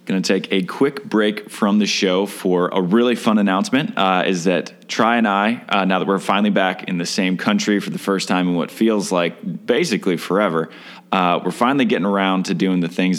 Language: English